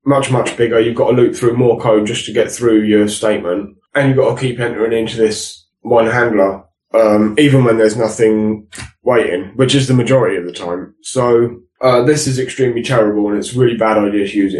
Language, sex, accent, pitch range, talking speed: English, male, British, 105-125 Hz, 220 wpm